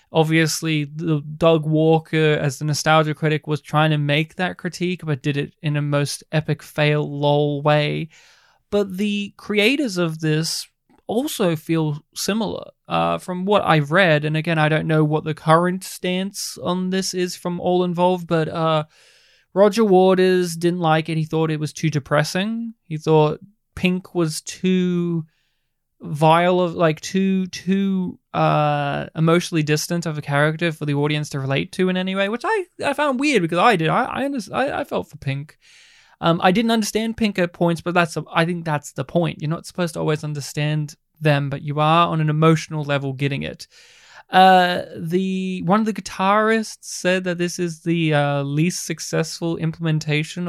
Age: 20-39